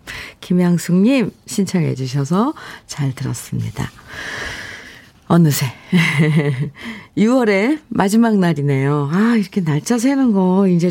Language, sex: Korean, female